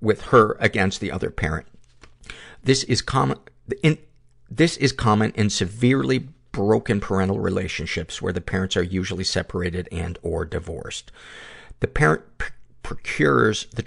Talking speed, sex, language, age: 120 wpm, male, English, 50-69